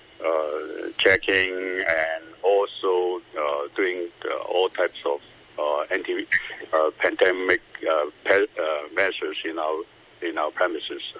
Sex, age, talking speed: male, 60-79, 120 wpm